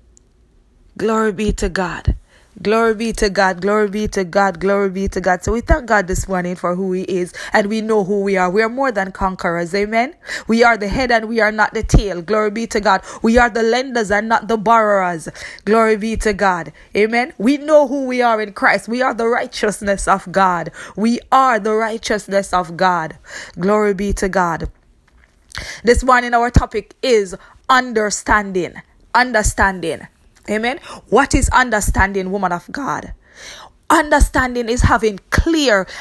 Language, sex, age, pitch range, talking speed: English, female, 20-39, 185-235 Hz, 180 wpm